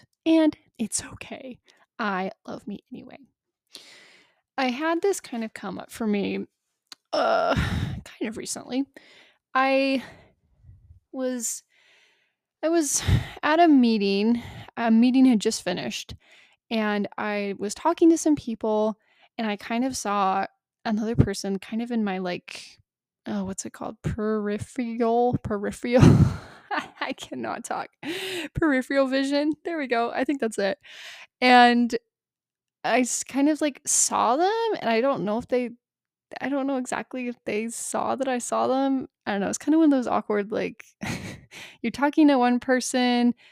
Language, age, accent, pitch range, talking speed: English, 20-39, American, 215-280 Hz, 150 wpm